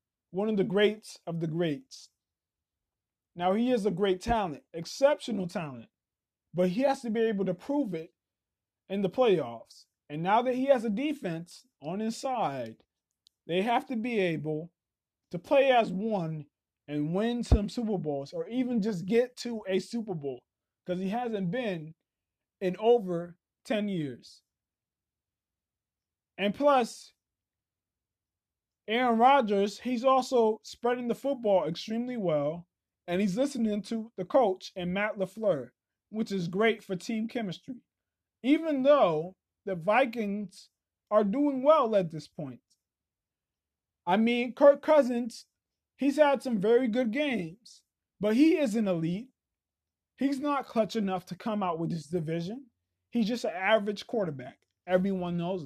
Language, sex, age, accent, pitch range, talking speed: English, male, 20-39, American, 155-235 Hz, 145 wpm